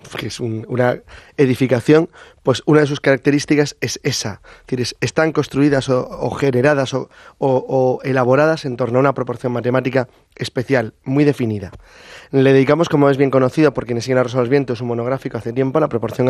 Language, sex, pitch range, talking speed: English, male, 125-150 Hz, 185 wpm